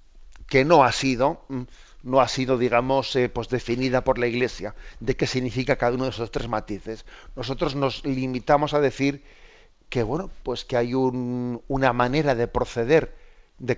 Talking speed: 170 wpm